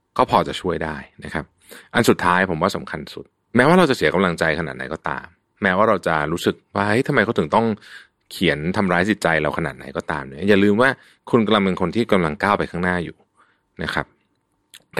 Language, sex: Thai, male